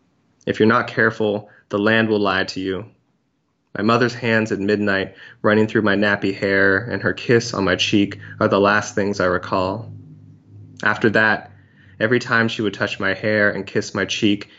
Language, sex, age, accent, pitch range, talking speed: English, male, 20-39, American, 100-110 Hz, 185 wpm